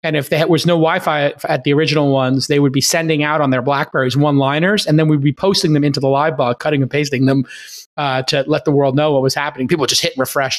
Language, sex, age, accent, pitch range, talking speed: English, male, 30-49, American, 140-170 Hz, 270 wpm